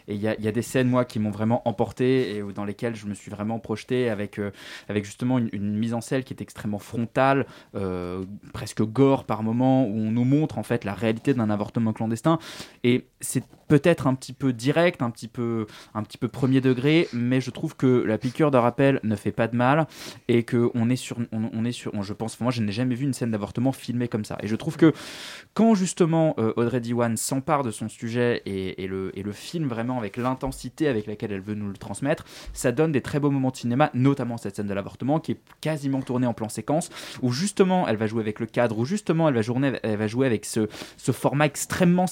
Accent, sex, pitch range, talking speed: French, male, 110-150 Hz, 235 wpm